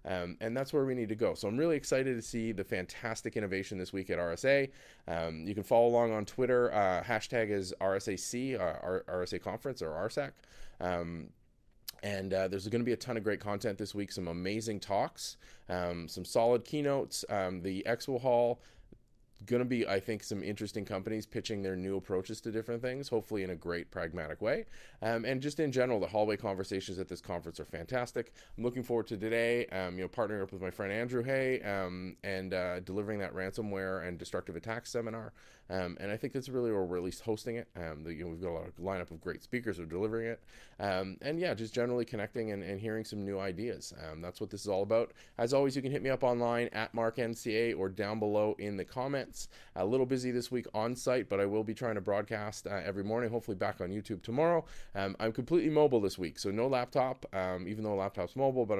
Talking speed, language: 230 wpm, English